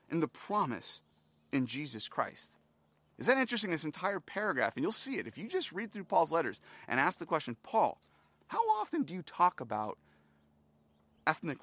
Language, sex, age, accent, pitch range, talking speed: English, male, 30-49, American, 100-165 Hz, 180 wpm